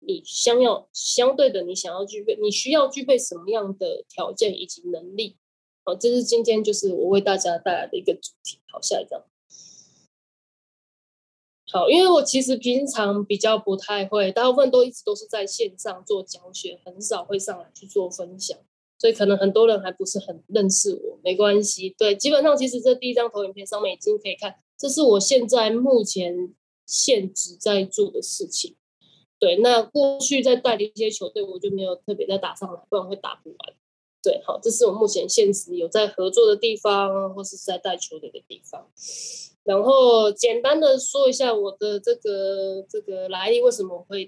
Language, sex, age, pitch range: Chinese, female, 10-29, 195-280 Hz